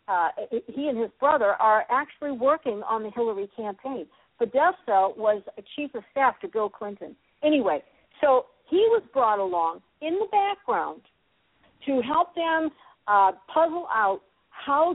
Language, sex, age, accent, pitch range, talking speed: English, female, 50-69, American, 210-290 Hz, 150 wpm